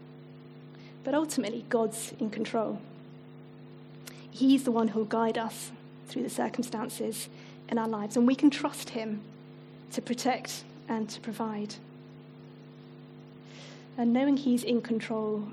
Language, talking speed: English, 130 wpm